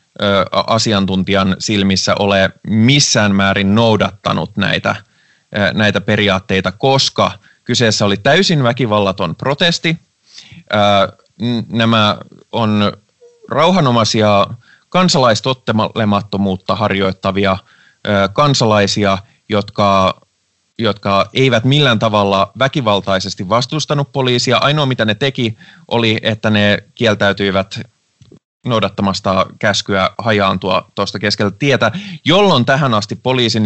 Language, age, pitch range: Finnish, 20-39, 100-120 Hz